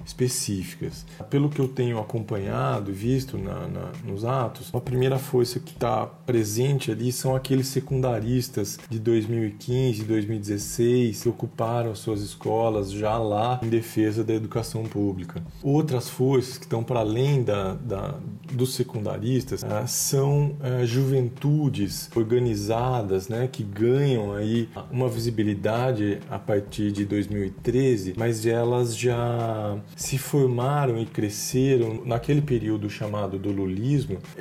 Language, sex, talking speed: Portuguese, male, 115 wpm